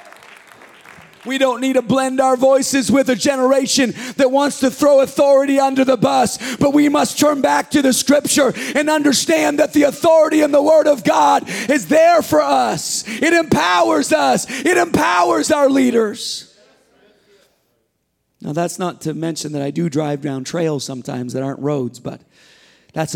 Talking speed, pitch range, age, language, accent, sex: 165 wpm, 245-325 Hz, 40-59, English, American, male